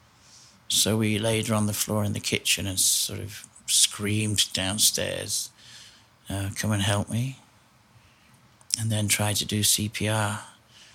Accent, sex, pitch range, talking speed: British, male, 105-115 Hz, 140 wpm